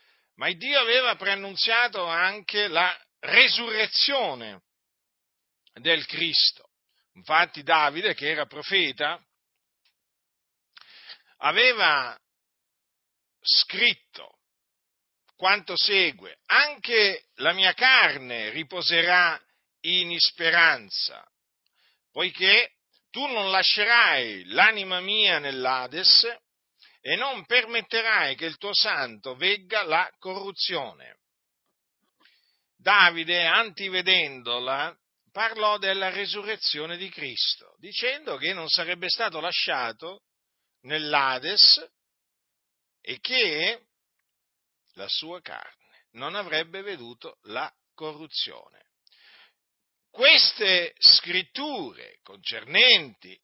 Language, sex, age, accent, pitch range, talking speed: Italian, male, 50-69, native, 165-230 Hz, 80 wpm